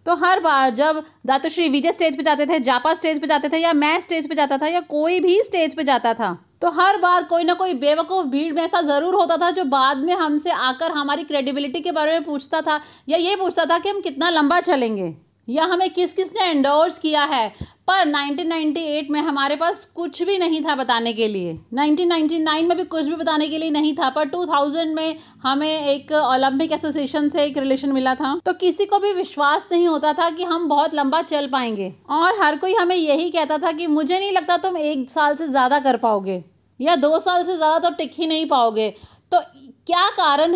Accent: native